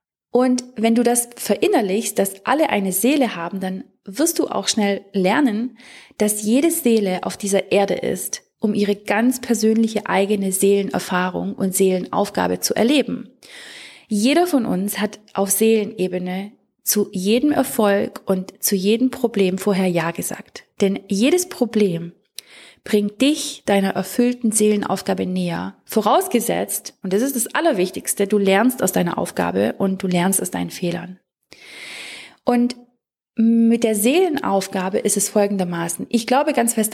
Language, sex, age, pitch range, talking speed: German, female, 30-49, 190-235 Hz, 140 wpm